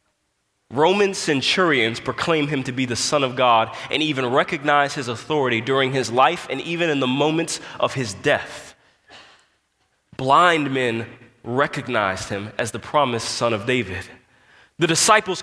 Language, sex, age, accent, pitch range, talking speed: English, male, 20-39, American, 135-180 Hz, 150 wpm